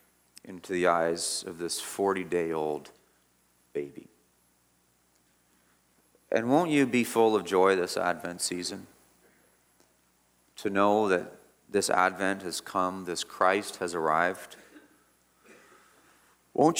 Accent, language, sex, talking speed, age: American, English, male, 110 wpm, 40-59